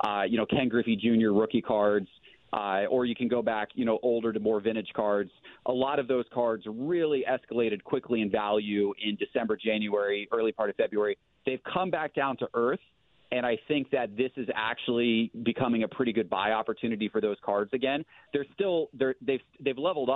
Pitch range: 110-130 Hz